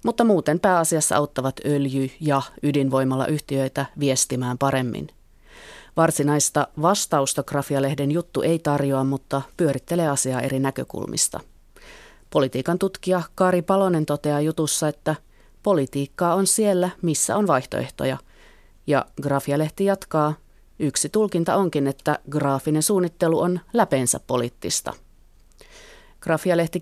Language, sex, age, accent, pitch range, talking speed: Finnish, female, 30-49, native, 140-180 Hz, 105 wpm